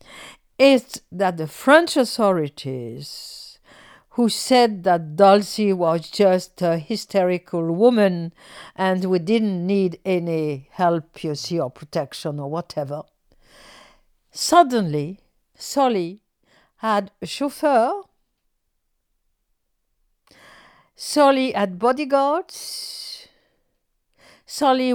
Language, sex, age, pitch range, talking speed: English, female, 50-69, 175-255 Hz, 85 wpm